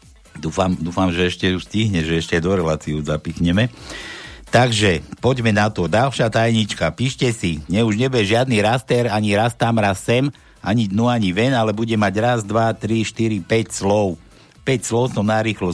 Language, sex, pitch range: Slovak, male, 95-115 Hz